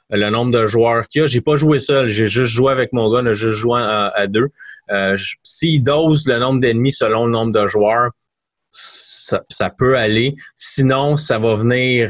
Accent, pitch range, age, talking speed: Canadian, 105-125 Hz, 30-49, 220 wpm